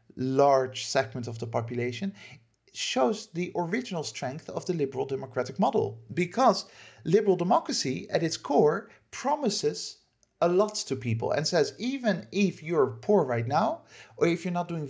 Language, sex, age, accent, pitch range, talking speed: English, male, 50-69, Dutch, 120-200 Hz, 155 wpm